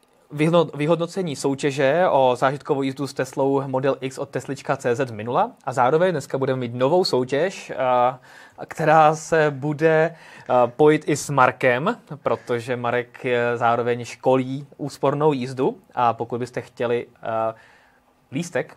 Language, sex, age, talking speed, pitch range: Czech, male, 20-39, 120 wpm, 120-145 Hz